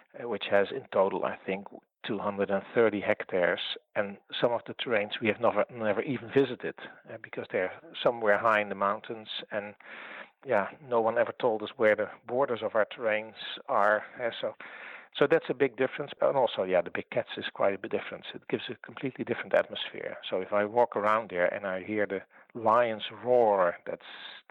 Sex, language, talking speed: male, English, 190 wpm